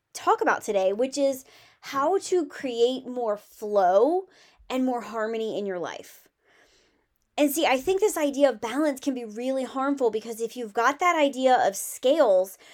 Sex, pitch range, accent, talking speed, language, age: female, 220-290 Hz, American, 170 wpm, English, 20-39